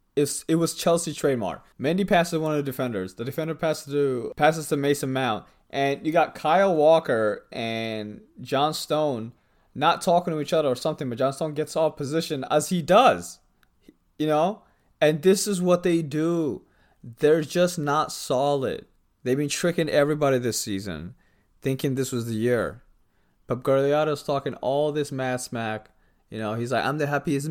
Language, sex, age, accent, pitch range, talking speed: English, male, 20-39, American, 100-150 Hz, 175 wpm